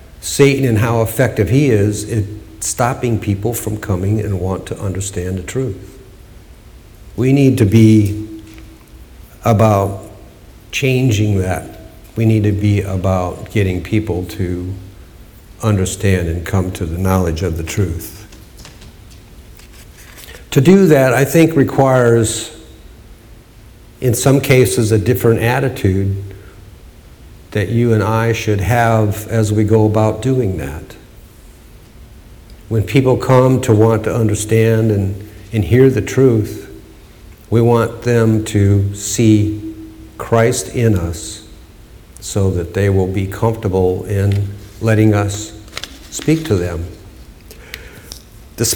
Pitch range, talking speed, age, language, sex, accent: 95-115 Hz, 120 wpm, 60-79, English, male, American